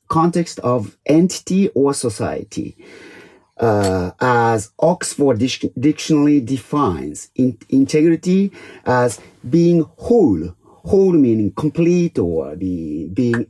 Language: English